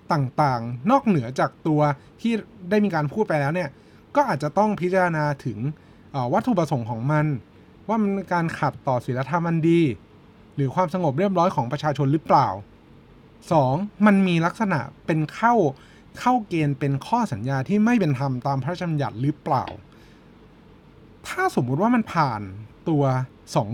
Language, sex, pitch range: Thai, male, 125-180 Hz